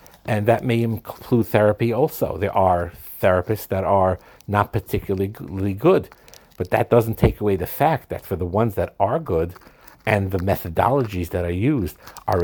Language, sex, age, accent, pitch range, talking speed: English, male, 50-69, American, 95-120 Hz, 170 wpm